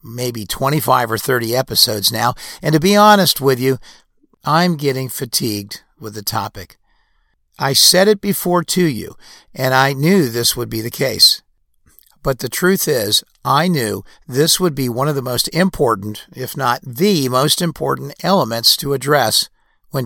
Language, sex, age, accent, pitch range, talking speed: English, male, 50-69, American, 120-165 Hz, 165 wpm